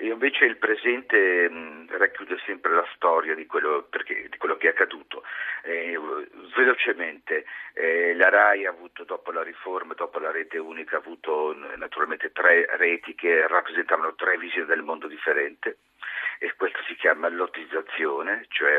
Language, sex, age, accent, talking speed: Italian, male, 50-69, native, 155 wpm